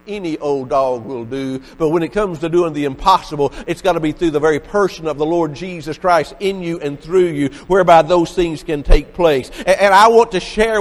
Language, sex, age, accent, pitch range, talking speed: English, male, 50-69, American, 185-240 Hz, 235 wpm